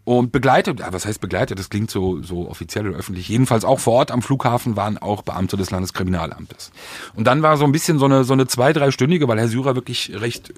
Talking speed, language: 240 wpm, German